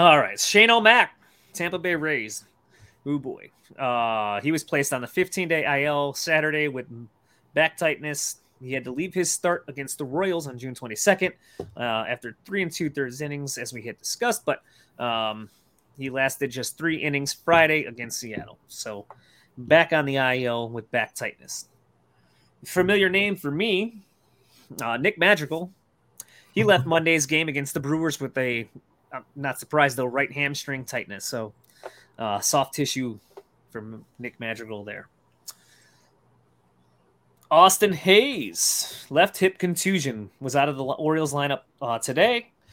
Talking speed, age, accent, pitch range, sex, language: 145 wpm, 30-49, American, 120-165 Hz, male, English